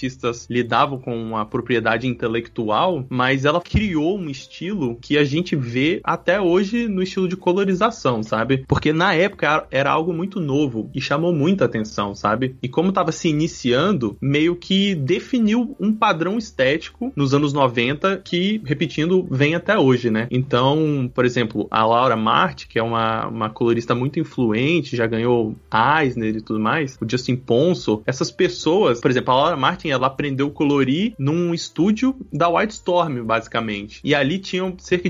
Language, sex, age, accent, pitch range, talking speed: Portuguese, male, 20-39, Brazilian, 125-180 Hz, 160 wpm